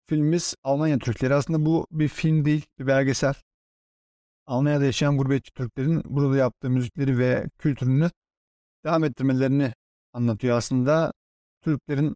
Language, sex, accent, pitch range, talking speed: Turkish, male, native, 130-150 Hz, 120 wpm